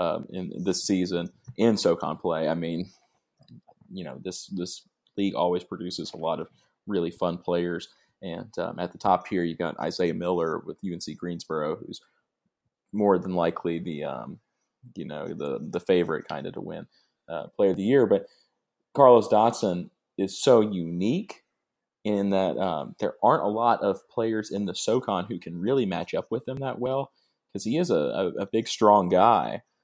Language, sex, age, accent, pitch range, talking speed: English, male, 30-49, American, 90-105 Hz, 185 wpm